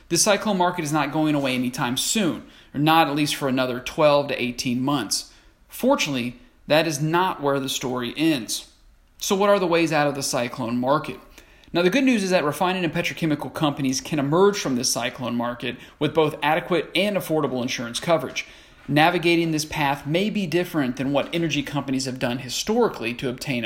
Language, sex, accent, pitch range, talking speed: English, male, American, 130-170 Hz, 190 wpm